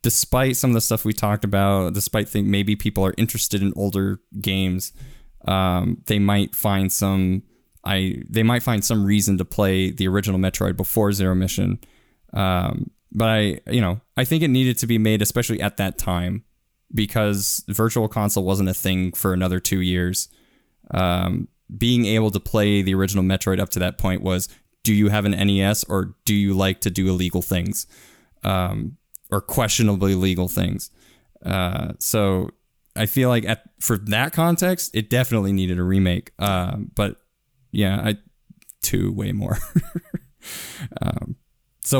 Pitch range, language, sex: 95-115 Hz, English, male